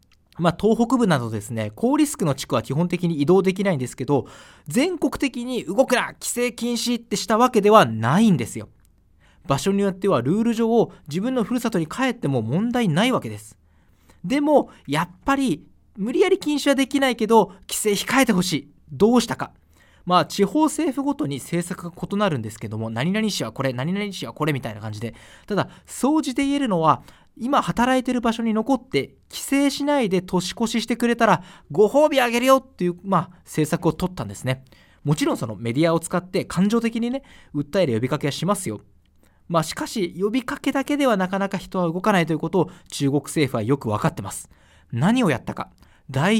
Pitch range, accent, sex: 140-235 Hz, native, male